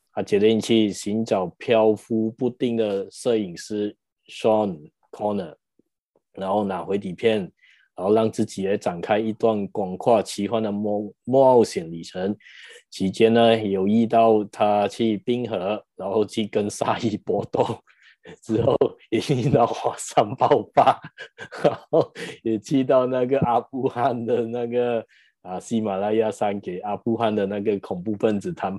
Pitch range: 100-115 Hz